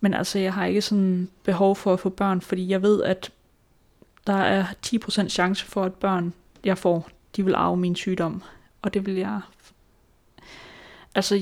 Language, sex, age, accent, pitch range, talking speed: Danish, female, 20-39, native, 180-195 Hz, 180 wpm